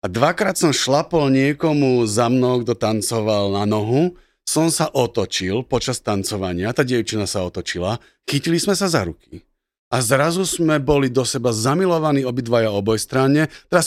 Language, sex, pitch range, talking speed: Slovak, male, 120-160 Hz, 155 wpm